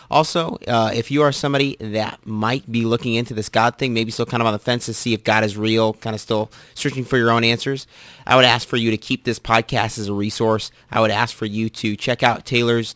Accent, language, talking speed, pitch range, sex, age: American, English, 260 wpm, 110-120 Hz, male, 30-49